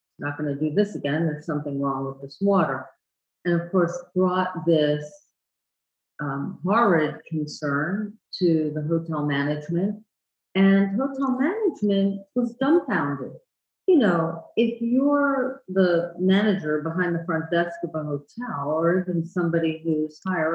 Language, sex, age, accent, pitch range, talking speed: English, female, 50-69, American, 155-190 Hz, 135 wpm